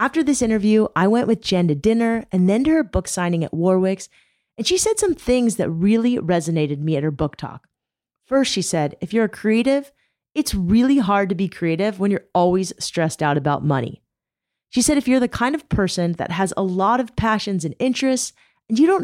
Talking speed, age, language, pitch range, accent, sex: 220 wpm, 30-49, English, 175-245 Hz, American, female